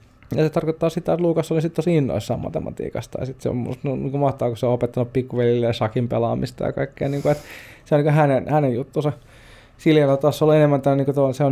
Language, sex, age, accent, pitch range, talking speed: Finnish, male, 20-39, native, 120-140 Hz, 245 wpm